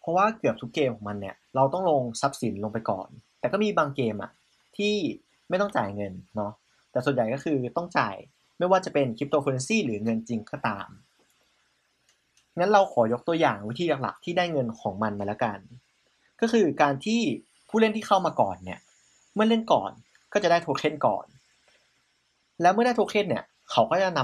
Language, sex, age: Thai, male, 30-49